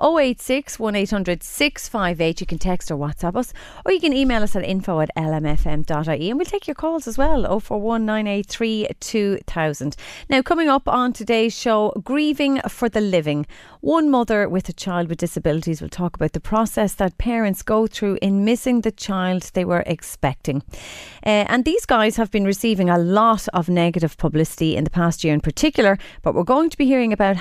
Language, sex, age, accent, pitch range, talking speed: English, female, 30-49, Irish, 170-235 Hz, 175 wpm